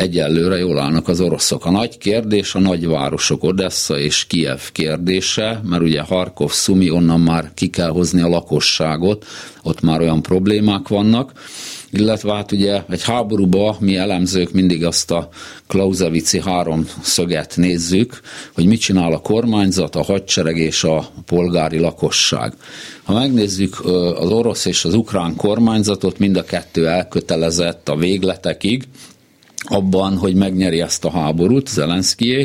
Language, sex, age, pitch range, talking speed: Hungarian, male, 50-69, 85-105 Hz, 140 wpm